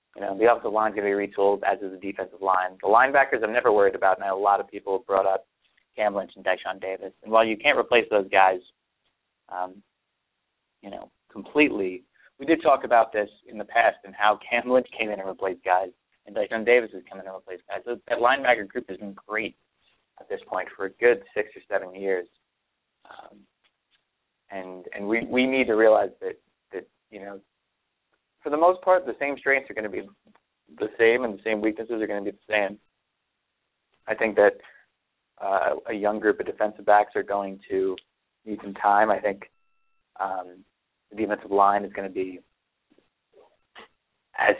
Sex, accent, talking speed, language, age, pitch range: male, American, 205 wpm, English, 20-39, 95-120 Hz